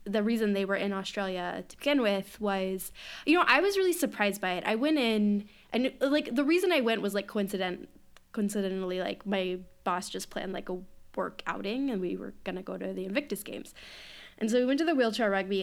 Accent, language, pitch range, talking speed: American, English, 195-255 Hz, 225 wpm